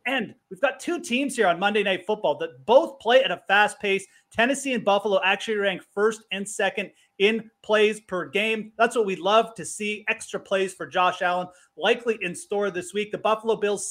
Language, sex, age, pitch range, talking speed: English, male, 30-49, 180-225 Hz, 205 wpm